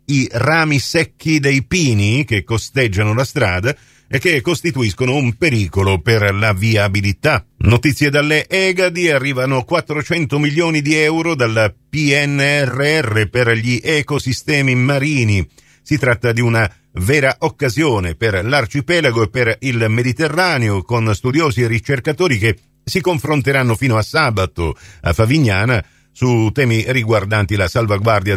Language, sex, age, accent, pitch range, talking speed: Italian, male, 50-69, native, 110-150 Hz, 125 wpm